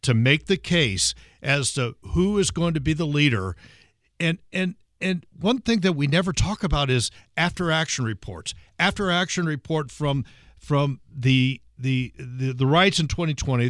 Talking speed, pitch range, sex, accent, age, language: 170 wpm, 125-175 Hz, male, American, 60-79, English